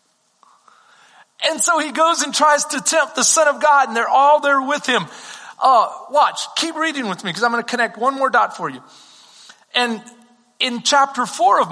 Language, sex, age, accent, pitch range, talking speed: English, male, 40-59, American, 180-245 Hz, 200 wpm